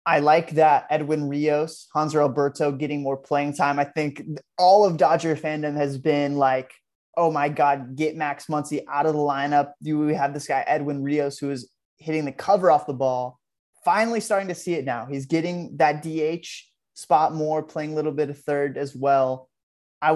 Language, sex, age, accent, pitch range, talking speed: English, male, 20-39, American, 140-160 Hz, 195 wpm